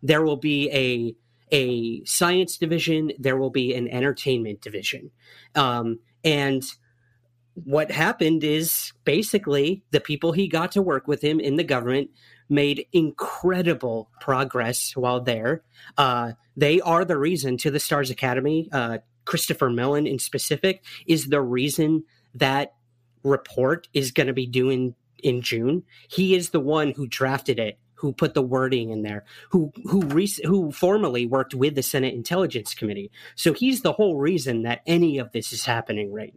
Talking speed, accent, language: 160 wpm, American, English